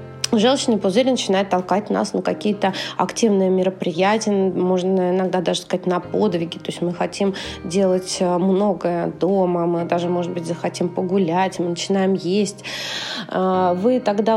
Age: 20-39